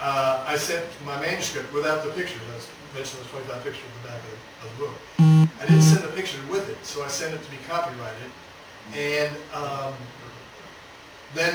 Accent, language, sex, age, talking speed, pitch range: American, English, male, 40-59, 195 wpm, 125-150 Hz